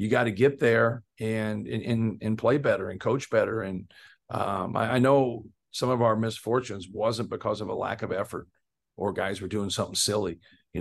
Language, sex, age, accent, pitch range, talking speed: English, male, 40-59, American, 105-120 Hz, 200 wpm